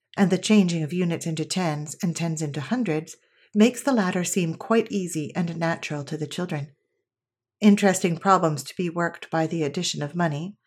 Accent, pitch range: American, 160-210 Hz